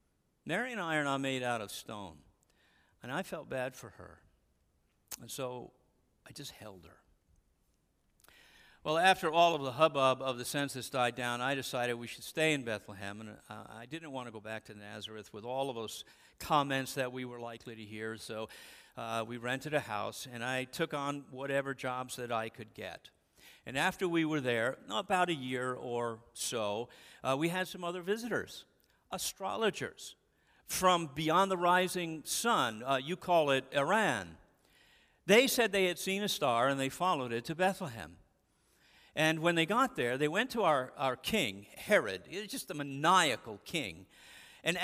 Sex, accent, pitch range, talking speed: male, American, 120-180 Hz, 180 wpm